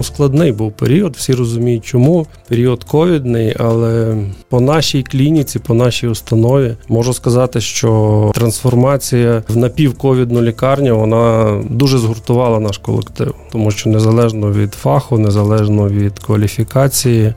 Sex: male